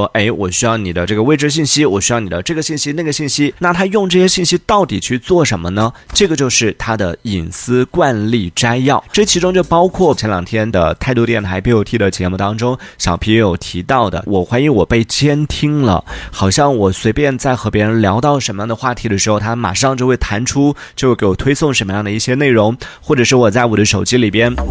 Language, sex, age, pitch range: Chinese, male, 20-39, 100-140 Hz